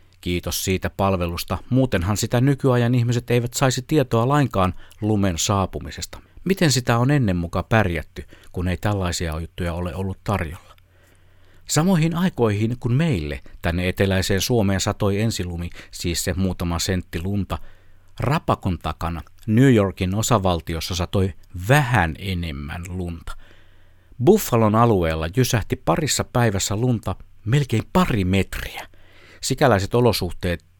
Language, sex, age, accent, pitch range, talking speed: Finnish, male, 60-79, native, 90-115 Hz, 115 wpm